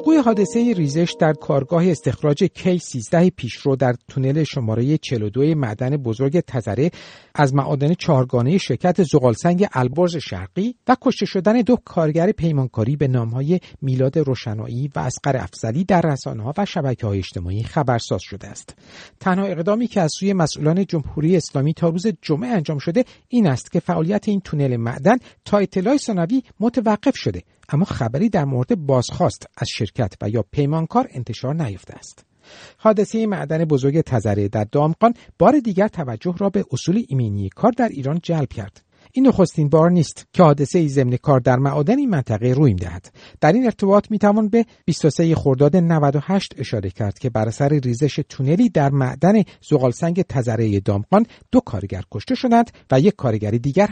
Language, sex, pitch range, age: Persian, male, 130-195 Hz, 50-69